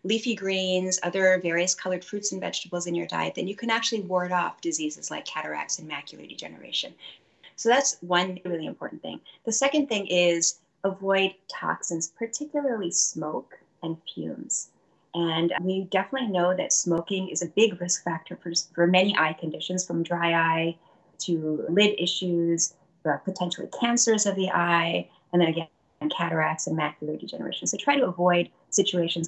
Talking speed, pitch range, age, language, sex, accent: 160 wpm, 175-215 Hz, 30-49, English, female, American